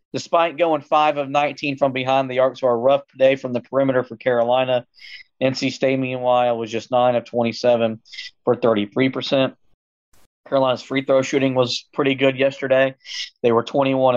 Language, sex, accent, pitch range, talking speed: English, male, American, 125-145 Hz, 165 wpm